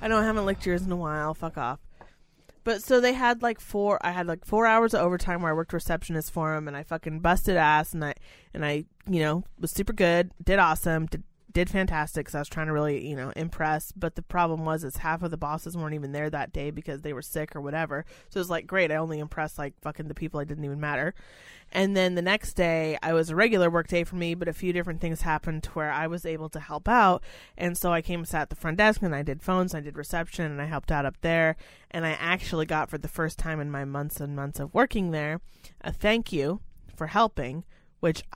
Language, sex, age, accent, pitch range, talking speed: English, female, 30-49, American, 155-185 Hz, 260 wpm